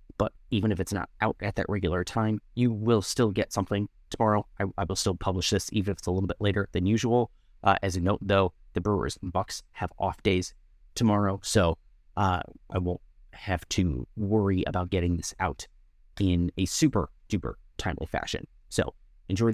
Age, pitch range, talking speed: 30-49, 90-115 Hz, 190 wpm